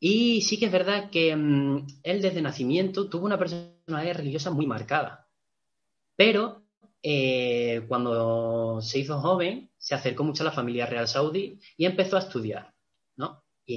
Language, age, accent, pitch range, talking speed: Spanish, 20-39, Spanish, 120-165 Hz, 155 wpm